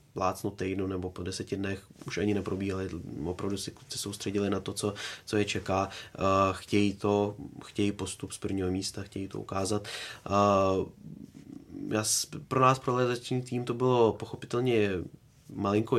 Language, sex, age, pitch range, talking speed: Czech, male, 20-39, 95-110 Hz, 140 wpm